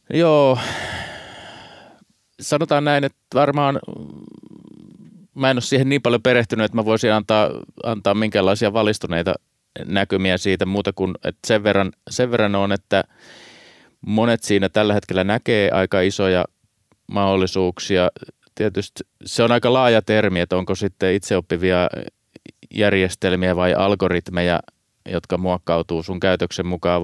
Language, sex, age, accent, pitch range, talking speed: Finnish, male, 30-49, native, 85-105 Hz, 120 wpm